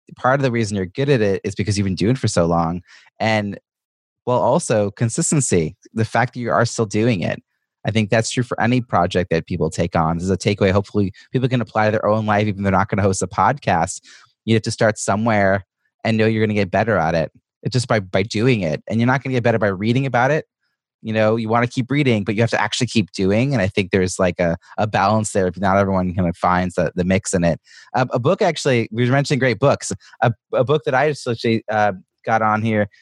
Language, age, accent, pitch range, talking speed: English, 30-49, American, 100-125 Hz, 265 wpm